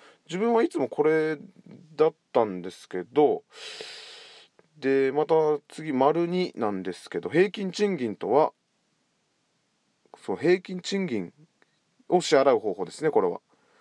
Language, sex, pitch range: Japanese, male, 145-190 Hz